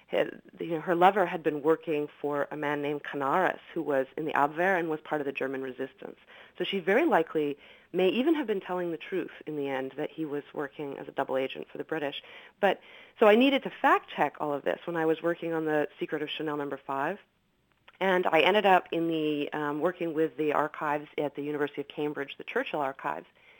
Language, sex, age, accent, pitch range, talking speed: English, female, 40-59, American, 150-195 Hz, 230 wpm